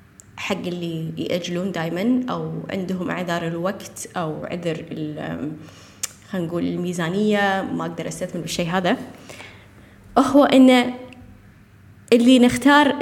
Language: Arabic